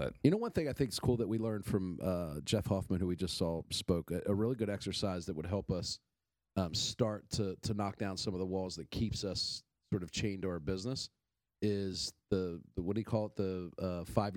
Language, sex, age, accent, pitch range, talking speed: English, male, 40-59, American, 95-120 Hz, 245 wpm